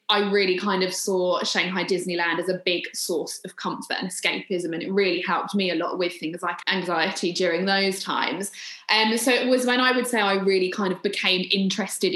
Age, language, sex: 20-39, English, female